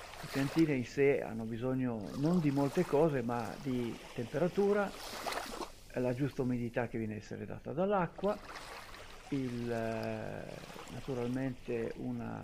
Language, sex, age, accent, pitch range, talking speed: Italian, male, 50-69, native, 120-140 Hz, 120 wpm